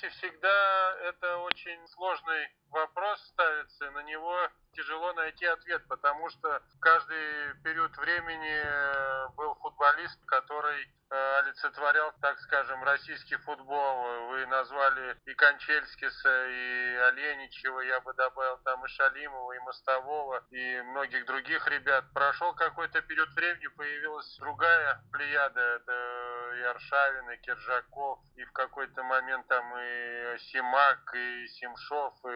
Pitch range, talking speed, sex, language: 125-160 Hz, 120 wpm, male, Russian